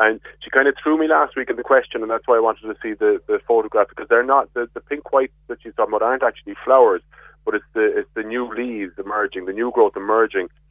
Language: English